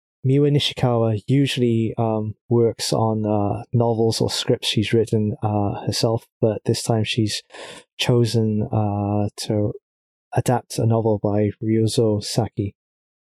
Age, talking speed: 20-39, 120 wpm